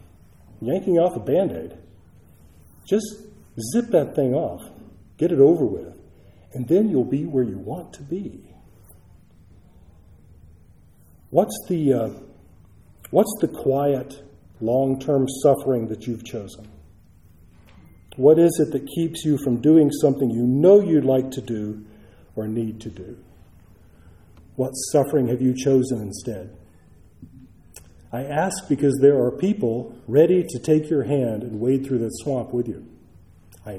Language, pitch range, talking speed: English, 90-140 Hz, 135 wpm